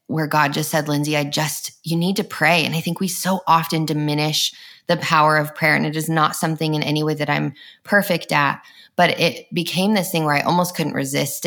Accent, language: American, English